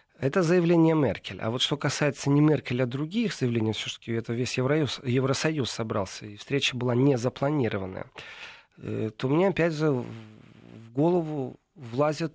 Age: 40-59